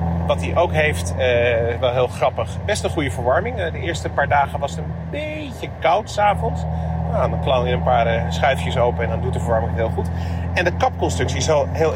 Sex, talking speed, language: male, 225 wpm, Dutch